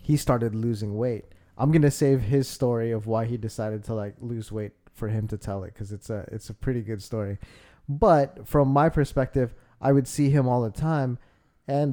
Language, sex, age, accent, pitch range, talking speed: English, male, 20-39, American, 115-150 Hz, 215 wpm